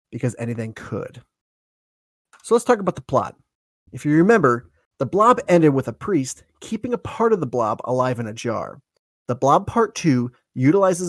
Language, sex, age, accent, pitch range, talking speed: English, male, 30-49, American, 120-155 Hz, 180 wpm